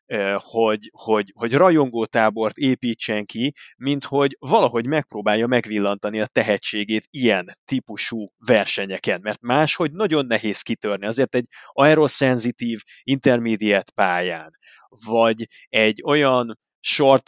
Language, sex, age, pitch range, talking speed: Hungarian, male, 30-49, 110-135 Hz, 100 wpm